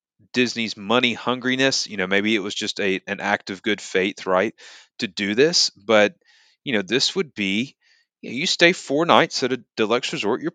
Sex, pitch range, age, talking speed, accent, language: male, 105-145 Hz, 30-49, 200 wpm, American, English